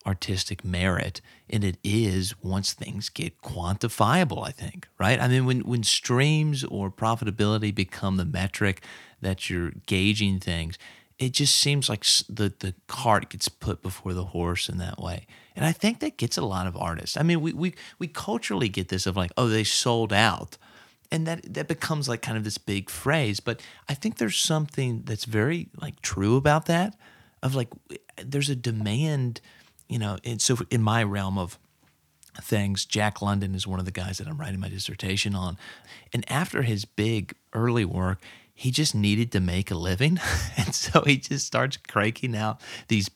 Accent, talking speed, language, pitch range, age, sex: American, 185 wpm, English, 95-130 Hz, 30-49, male